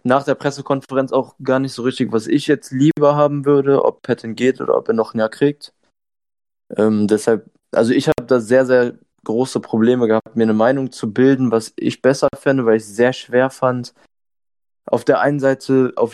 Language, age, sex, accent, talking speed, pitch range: German, 20-39, male, German, 205 wpm, 110-130 Hz